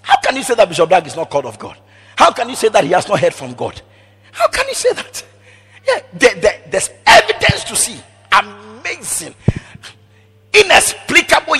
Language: English